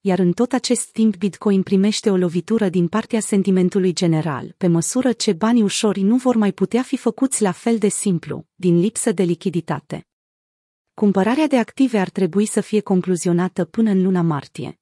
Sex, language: female, Romanian